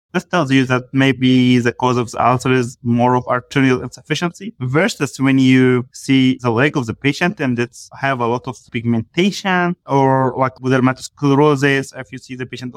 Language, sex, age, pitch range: English, male, 20-39, 125-140 Hz